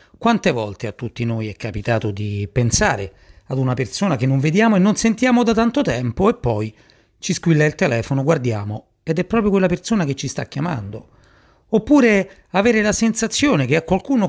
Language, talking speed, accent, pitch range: Italian, 185 wpm, native, 110-185 Hz